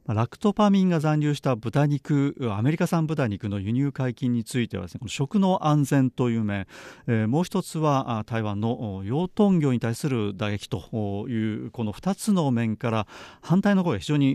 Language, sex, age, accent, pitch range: Japanese, male, 40-59, native, 105-155 Hz